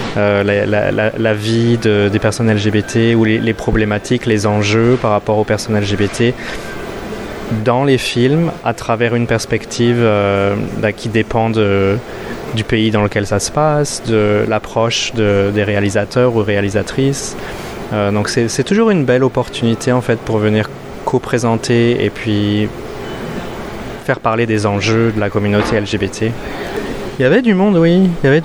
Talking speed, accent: 155 wpm, French